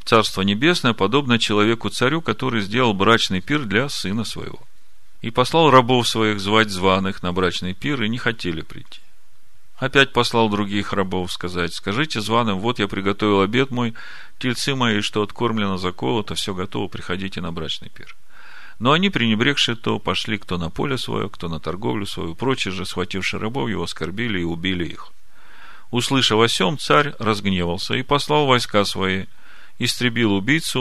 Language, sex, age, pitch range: Russian, male, 40-59, 95-125 Hz